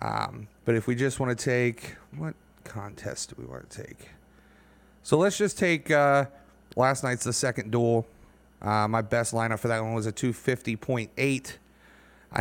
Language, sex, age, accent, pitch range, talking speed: English, male, 30-49, American, 115-140 Hz, 170 wpm